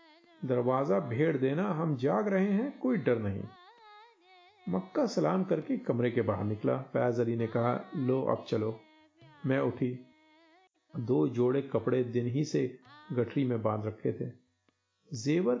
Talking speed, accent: 145 wpm, native